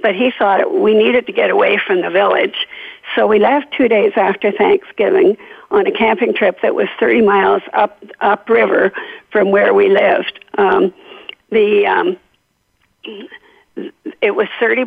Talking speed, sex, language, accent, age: 155 wpm, female, English, American, 50-69